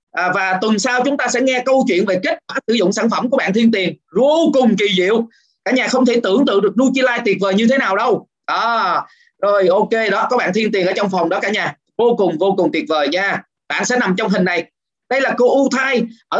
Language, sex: Vietnamese, male